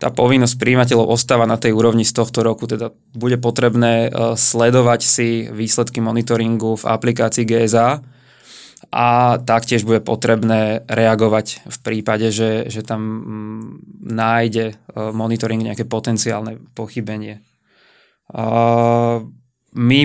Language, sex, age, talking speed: Slovak, male, 20-39, 110 wpm